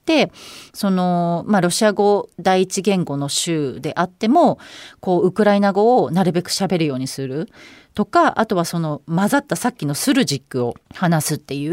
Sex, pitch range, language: female, 150-235 Hz, Japanese